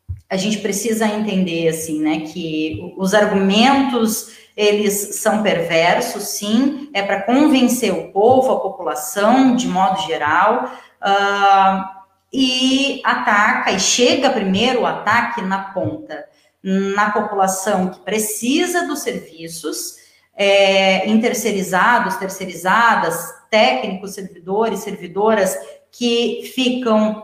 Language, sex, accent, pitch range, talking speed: Portuguese, female, Brazilian, 190-235 Hz, 105 wpm